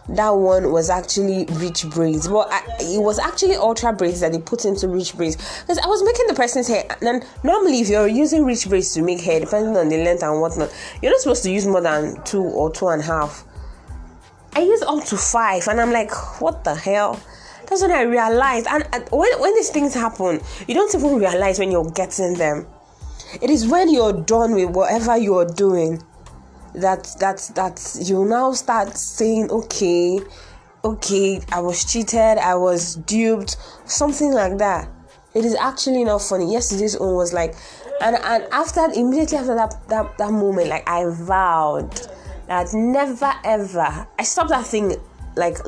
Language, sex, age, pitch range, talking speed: English, female, 20-39, 170-235 Hz, 185 wpm